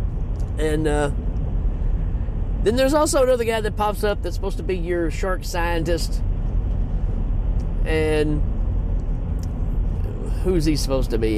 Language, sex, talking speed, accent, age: English, male, 125 wpm, American, 40-59